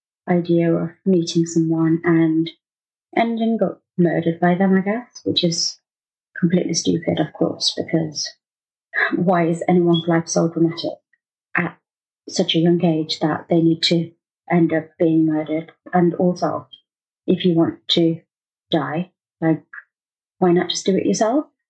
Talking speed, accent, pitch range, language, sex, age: 145 wpm, British, 165-185 Hz, English, female, 30-49